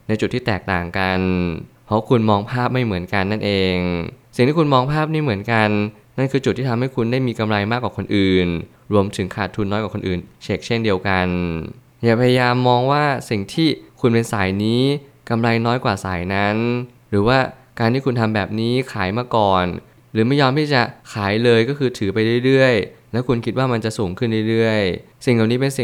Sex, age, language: male, 20-39, Thai